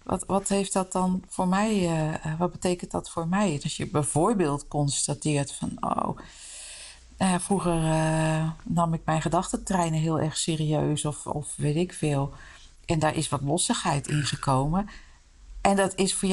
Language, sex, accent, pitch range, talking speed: Dutch, female, Dutch, 145-190 Hz, 165 wpm